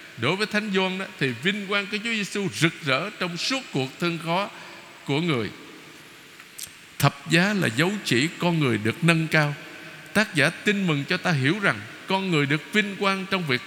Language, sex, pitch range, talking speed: Vietnamese, male, 140-185 Hz, 195 wpm